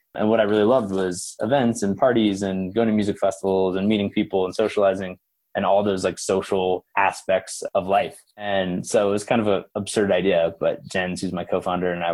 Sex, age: male, 20-39